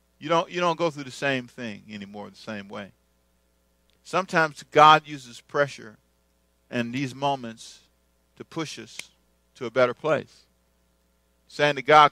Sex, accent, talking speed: male, American, 150 wpm